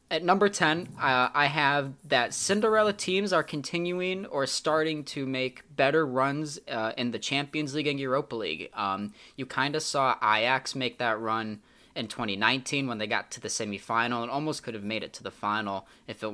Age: 20-39